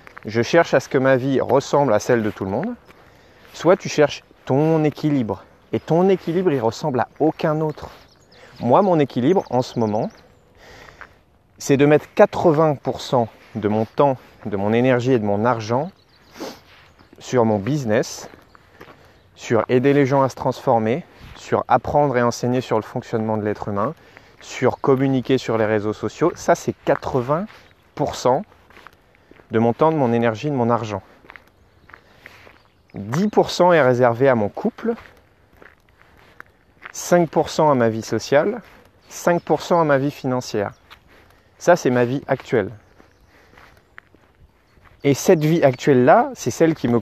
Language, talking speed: French, 145 wpm